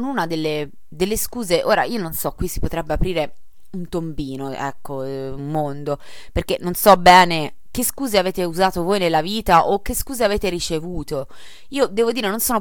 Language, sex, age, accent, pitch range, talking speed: Italian, female, 20-39, native, 150-215 Hz, 180 wpm